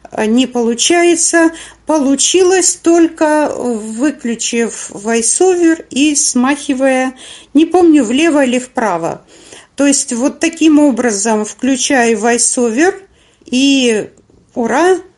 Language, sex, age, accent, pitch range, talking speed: Russian, female, 50-69, native, 230-320 Hz, 85 wpm